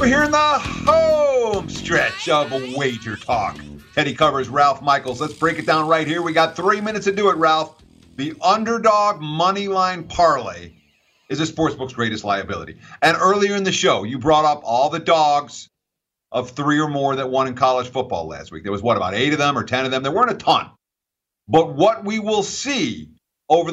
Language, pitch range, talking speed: English, 125-180 Hz, 200 wpm